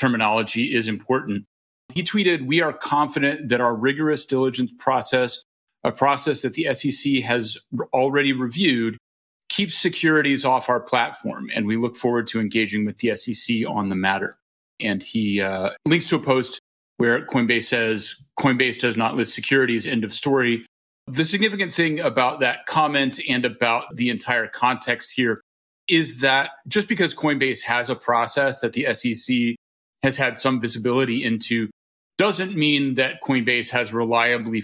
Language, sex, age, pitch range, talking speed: English, male, 40-59, 115-135 Hz, 155 wpm